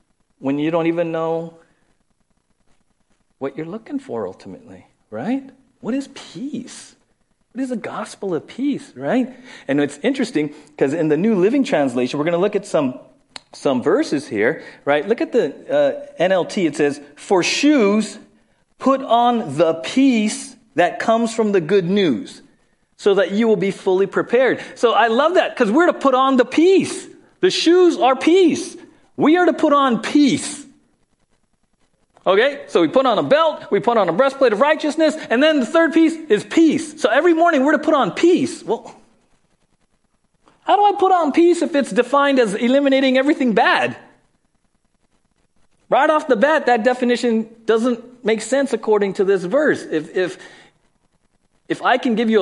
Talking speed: 170 wpm